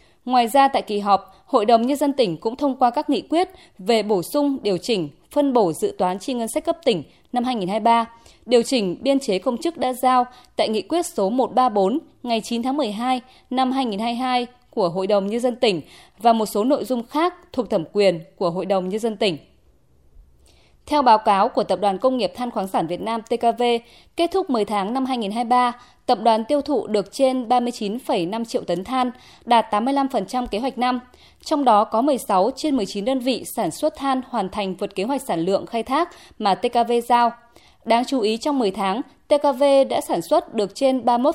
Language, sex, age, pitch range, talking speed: Vietnamese, female, 20-39, 205-275 Hz, 210 wpm